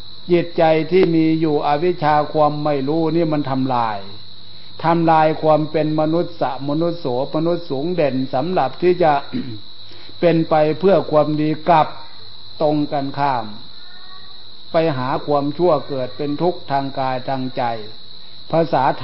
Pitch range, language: 130-160 Hz, Thai